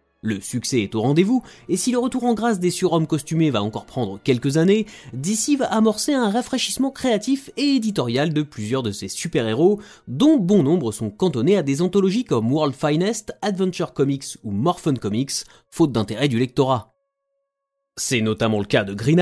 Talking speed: 180 wpm